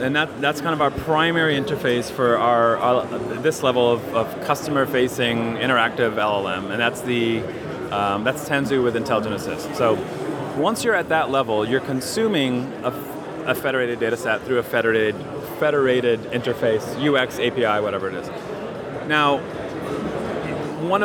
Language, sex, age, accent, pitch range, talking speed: English, male, 30-49, American, 120-150 Hz, 150 wpm